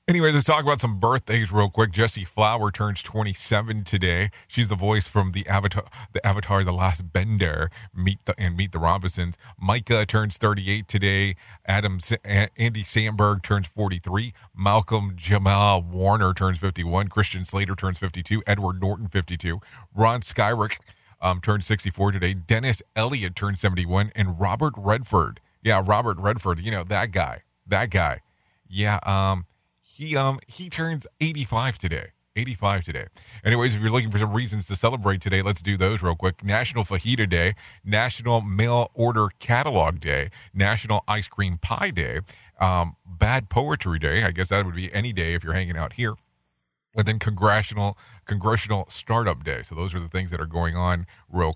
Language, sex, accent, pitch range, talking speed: English, male, American, 95-115 Hz, 165 wpm